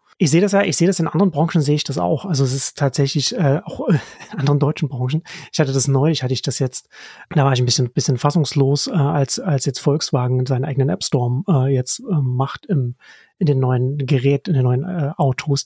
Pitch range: 135-165 Hz